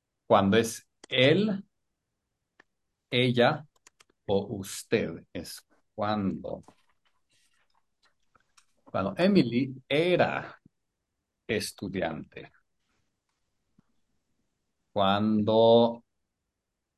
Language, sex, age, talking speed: English, male, 50-69, 45 wpm